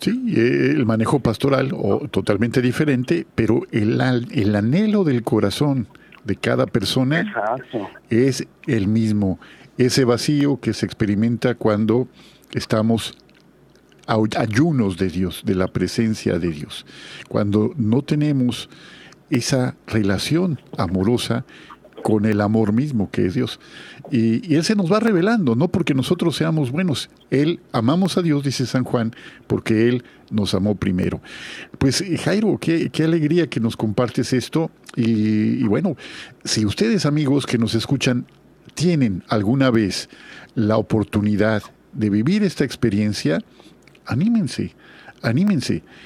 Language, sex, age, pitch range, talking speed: Spanish, male, 50-69, 110-145 Hz, 130 wpm